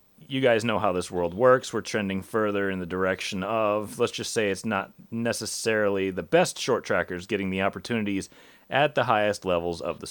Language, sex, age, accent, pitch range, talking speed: English, male, 40-59, American, 90-125 Hz, 195 wpm